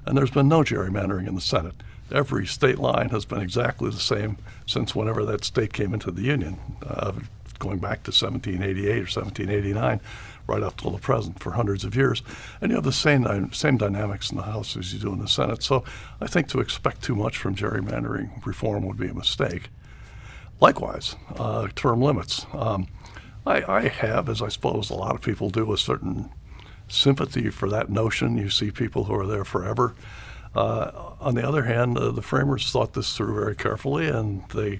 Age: 60-79